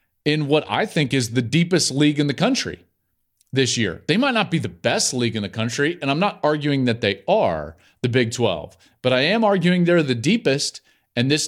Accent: American